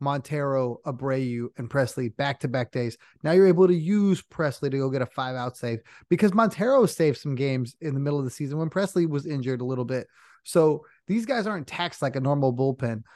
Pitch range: 135-175 Hz